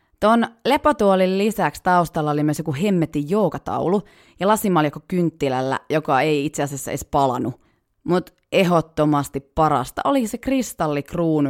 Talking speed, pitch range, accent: 125 wpm, 145-200 Hz, native